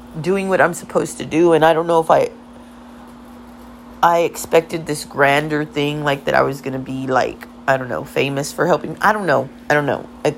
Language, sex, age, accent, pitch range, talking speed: English, female, 40-59, American, 135-160 Hz, 215 wpm